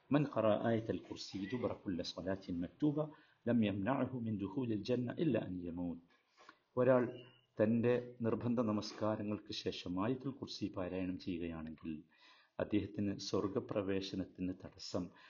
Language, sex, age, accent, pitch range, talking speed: Malayalam, male, 50-69, native, 90-110 Hz, 110 wpm